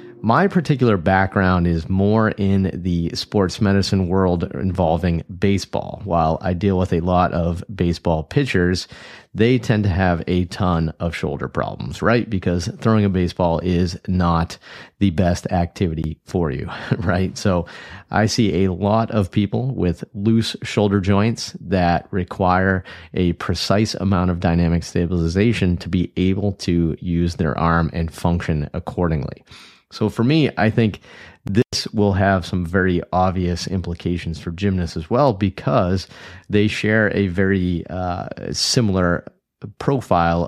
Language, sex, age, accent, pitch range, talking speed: English, male, 30-49, American, 85-100 Hz, 140 wpm